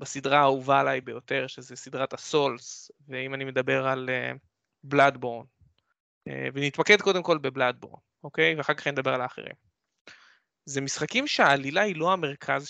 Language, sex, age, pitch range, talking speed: Hebrew, male, 20-39, 140-185 Hz, 130 wpm